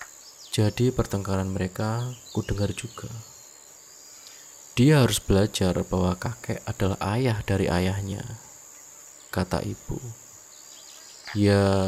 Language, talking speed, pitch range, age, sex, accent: Indonesian, 90 wpm, 95-120 Hz, 20-39, male, native